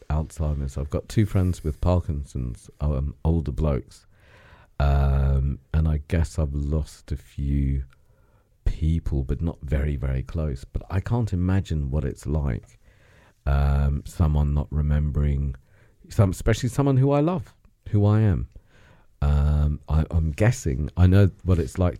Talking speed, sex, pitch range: 140 wpm, male, 70-95 Hz